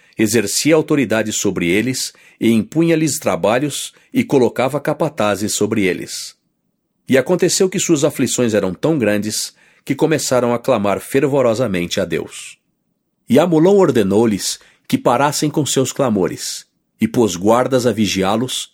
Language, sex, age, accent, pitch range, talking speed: English, male, 50-69, Brazilian, 110-145 Hz, 130 wpm